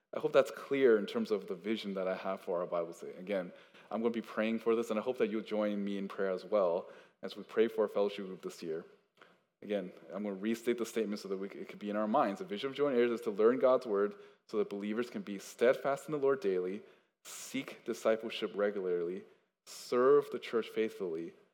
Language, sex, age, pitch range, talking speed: English, male, 20-39, 100-115 Hz, 240 wpm